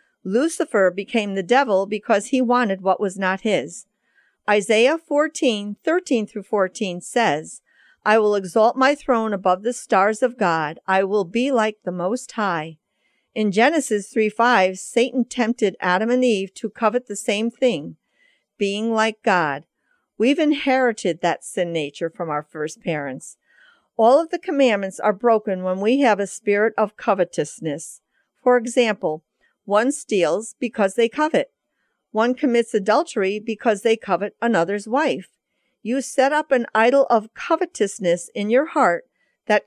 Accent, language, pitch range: American, English, 200-255 Hz